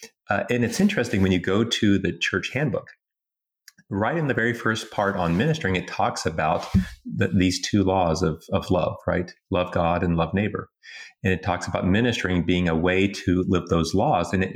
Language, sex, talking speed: English, male, 200 wpm